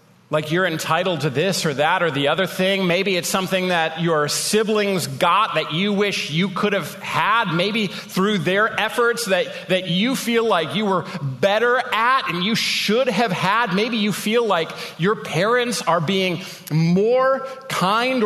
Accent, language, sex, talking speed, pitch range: American, English, male, 175 wpm, 135-200 Hz